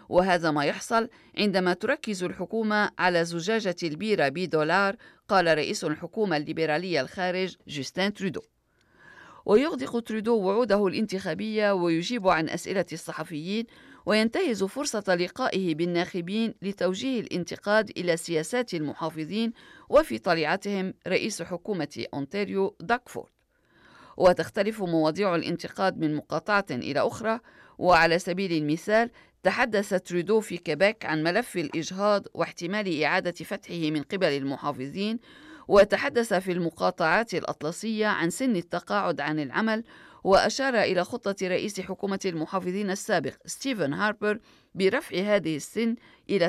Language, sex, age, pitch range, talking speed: Arabic, female, 50-69, 165-215 Hz, 110 wpm